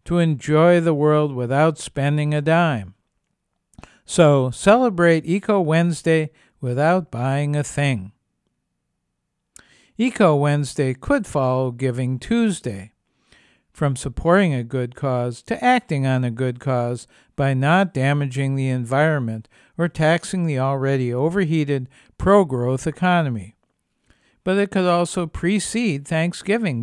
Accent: American